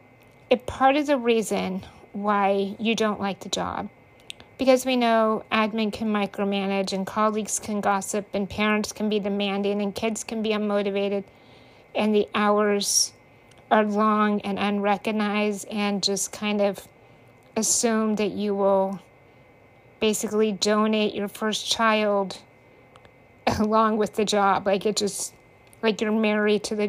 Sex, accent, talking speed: female, American, 140 wpm